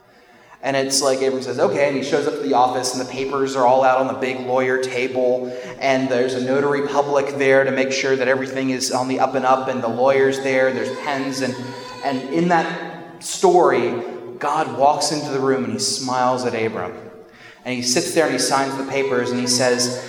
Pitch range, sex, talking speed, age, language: 130-150 Hz, male, 225 wpm, 20-39, English